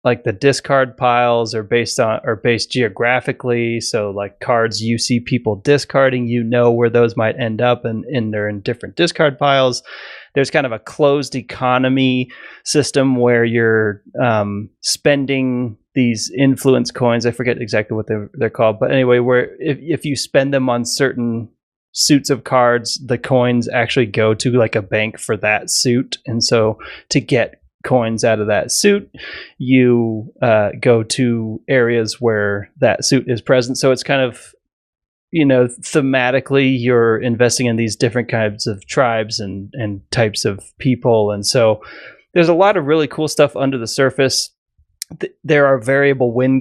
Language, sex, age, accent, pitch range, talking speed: English, male, 30-49, American, 115-135 Hz, 170 wpm